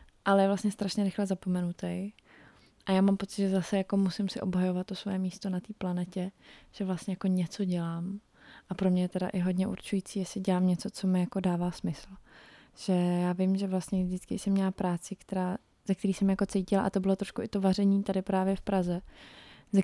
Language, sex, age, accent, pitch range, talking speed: Czech, female, 20-39, native, 185-205 Hz, 210 wpm